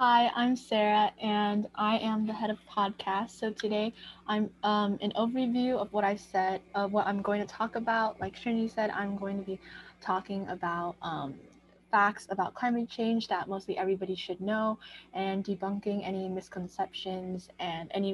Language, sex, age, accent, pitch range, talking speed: English, female, 10-29, American, 185-225 Hz, 170 wpm